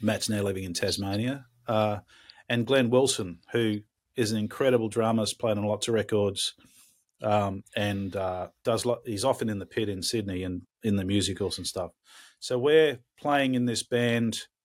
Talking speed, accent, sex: 175 wpm, Australian, male